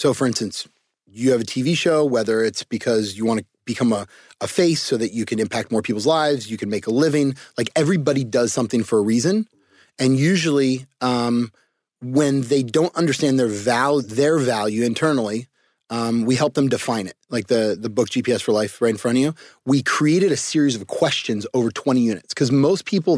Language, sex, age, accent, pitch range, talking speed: English, male, 30-49, American, 120-155 Hz, 205 wpm